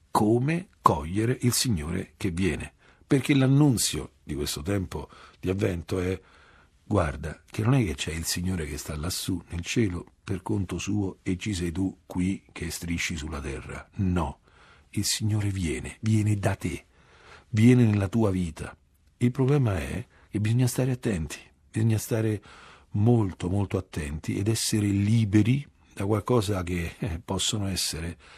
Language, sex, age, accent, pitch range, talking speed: Italian, male, 50-69, native, 80-110 Hz, 150 wpm